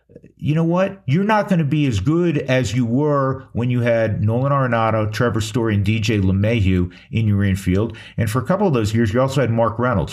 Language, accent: English, American